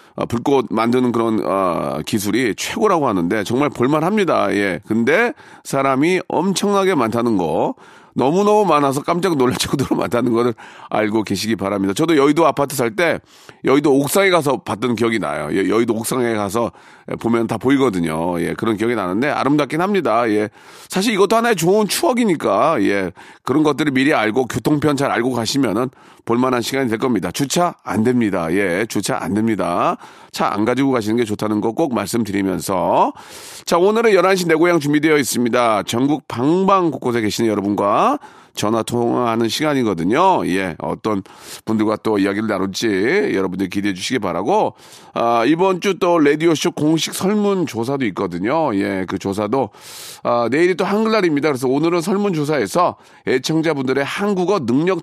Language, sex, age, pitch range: Korean, male, 40-59, 110-165 Hz